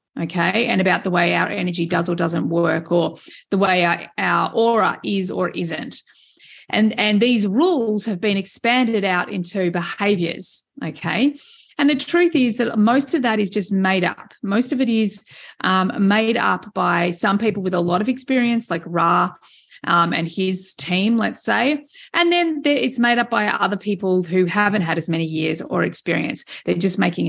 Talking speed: 185 wpm